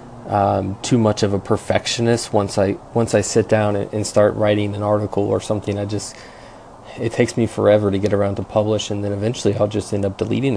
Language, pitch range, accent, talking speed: English, 100-110 Hz, American, 220 wpm